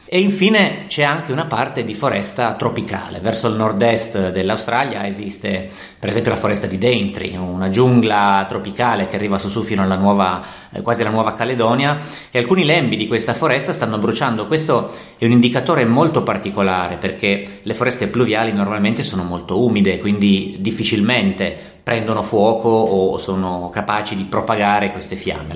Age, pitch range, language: 30-49, 95-120 Hz, Italian